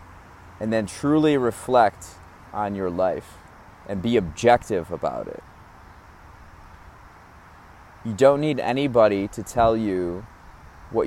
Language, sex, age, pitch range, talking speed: English, male, 30-49, 85-115 Hz, 110 wpm